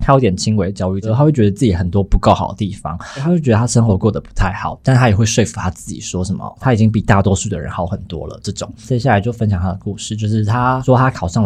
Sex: male